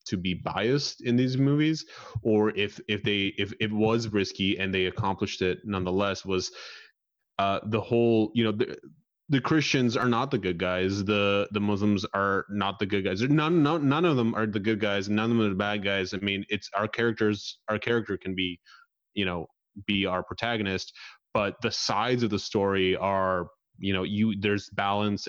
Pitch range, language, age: 95-110 Hz, English, 20-39